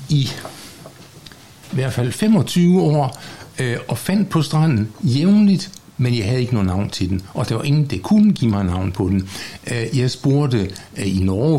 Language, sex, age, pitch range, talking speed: Danish, male, 60-79, 100-140 Hz, 180 wpm